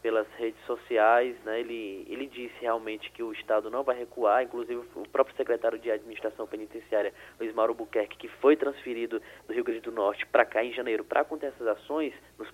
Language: Portuguese